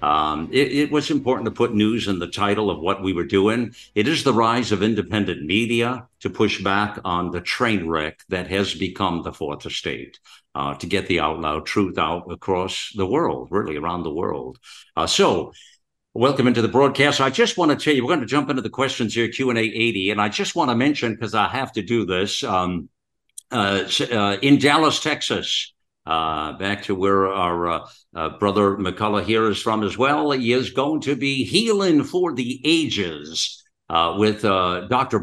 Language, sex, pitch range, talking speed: English, male, 100-125 Hz, 200 wpm